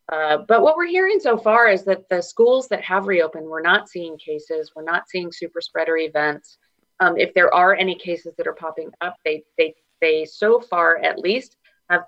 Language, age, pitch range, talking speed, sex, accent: English, 30-49, 155-220 Hz, 210 wpm, female, American